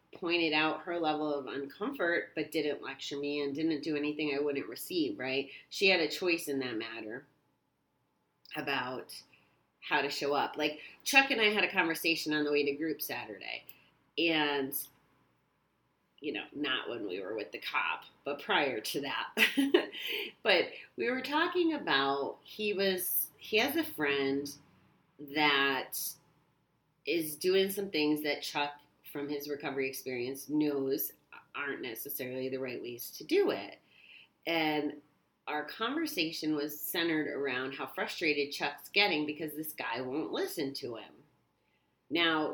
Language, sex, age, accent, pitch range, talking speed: English, female, 30-49, American, 140-170 Hz, 150 wpm